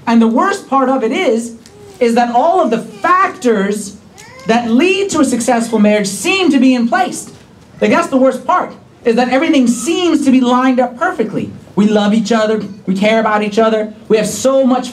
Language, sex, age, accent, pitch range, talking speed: English, male, 30-49, American, 200-255 Hz, 205 wpm